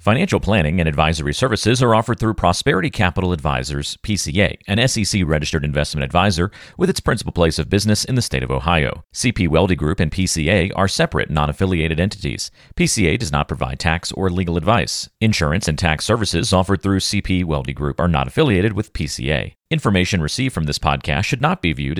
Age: 40-59